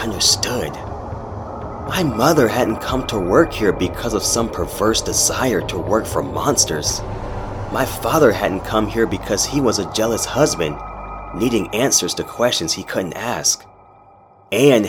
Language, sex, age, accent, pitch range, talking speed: English, male, 30-49, American, 95-110 Hz, 145 wpm